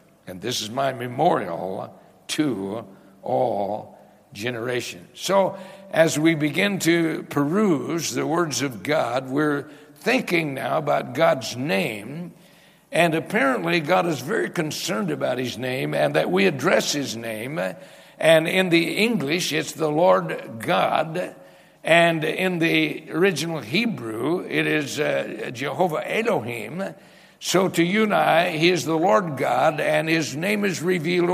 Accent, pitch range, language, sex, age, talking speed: American, 135-180 Hz, English, male, 60-79, 135 wpm